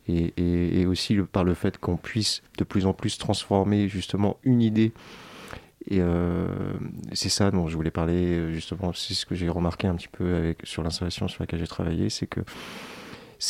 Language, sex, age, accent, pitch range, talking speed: French, male, 40-59, French, 85-110 Hz, 200 wpm